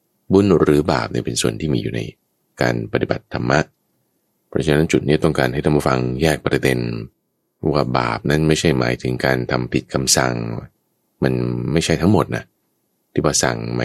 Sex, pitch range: male, 65-90 Hz